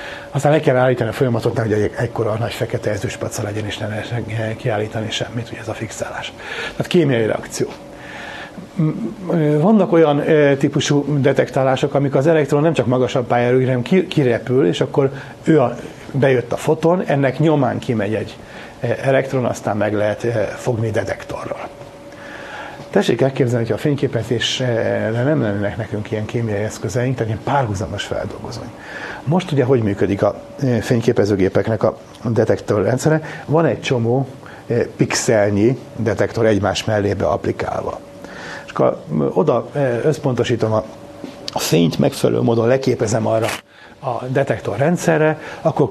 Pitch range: 115-145 Hz